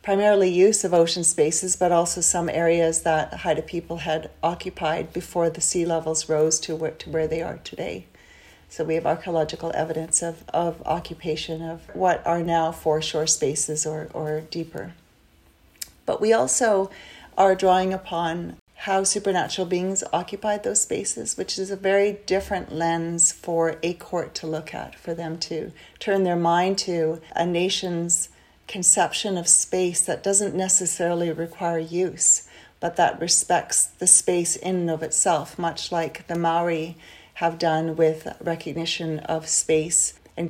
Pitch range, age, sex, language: 160-180 Hz, 40-59, female, English